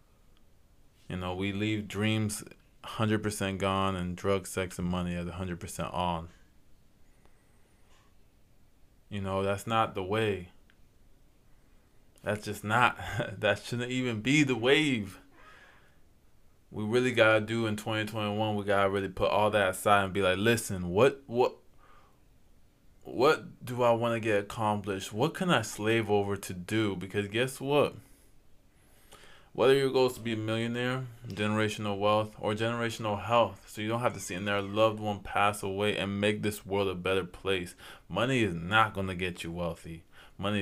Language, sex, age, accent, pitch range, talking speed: English, male, 20-39, American, 95-115 Hz, 160 wpm